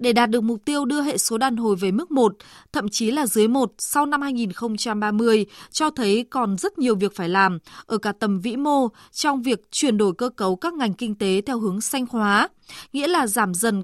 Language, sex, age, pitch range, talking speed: Vietnamese, female, 20-39, 210-265 Hz, 225 wpm